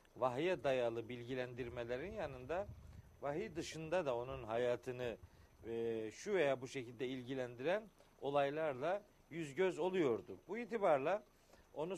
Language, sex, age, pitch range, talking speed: Turkish, male, 50-69, 135-185 Hz, 110 wpm